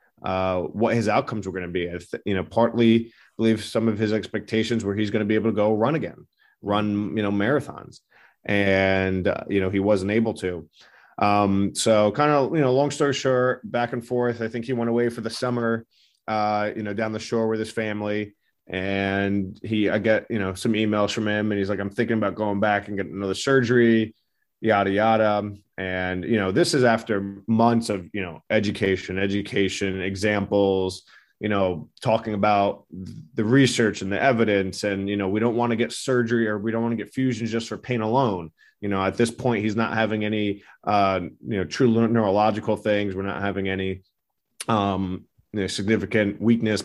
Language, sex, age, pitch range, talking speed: English, male, 30-49, 100-115 Hz, 205 wpm